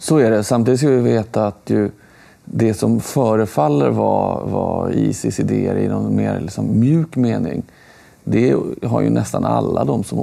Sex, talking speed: male, 165 wpm